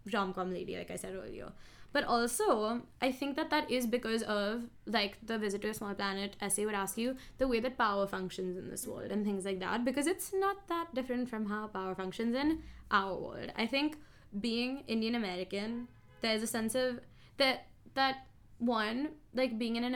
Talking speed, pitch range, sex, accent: 190 wpm, 200-245 Hz, female, Indian